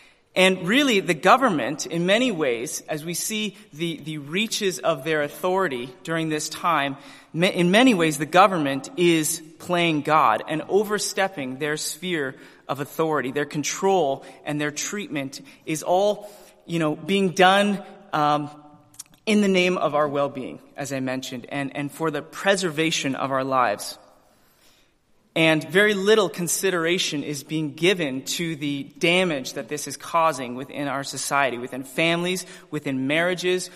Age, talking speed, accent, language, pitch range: 30-49, 150 wpm, American, English, 150-185 Hz